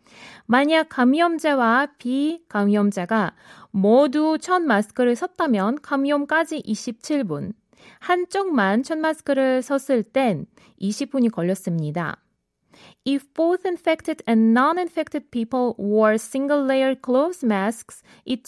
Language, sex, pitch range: Korean, female, 215-300 Hz